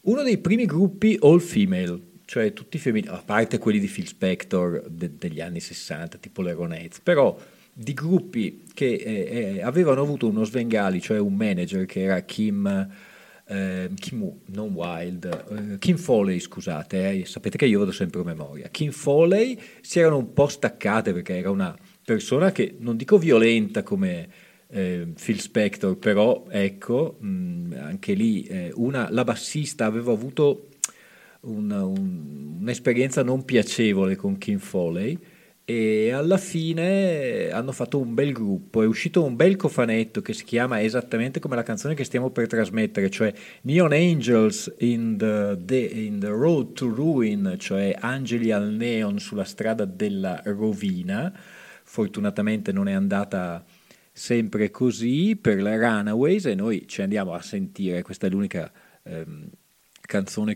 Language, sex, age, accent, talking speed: Italian, male, 40-59, native, 155 wpm